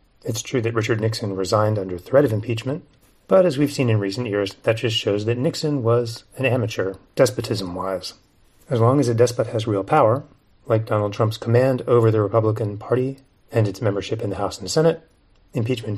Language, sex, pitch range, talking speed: English, male, 105-125 Hz, 190 wpm